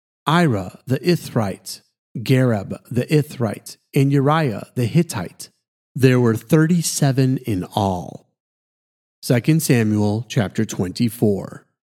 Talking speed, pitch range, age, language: 95 wpm, 120-150 Hz, 40-59, English